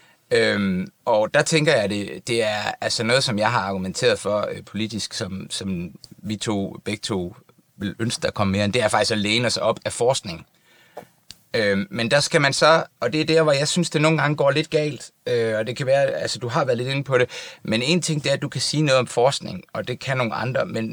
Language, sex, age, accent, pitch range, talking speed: Danish, male, 30-49, native, 110-155 Hz, 250 wpm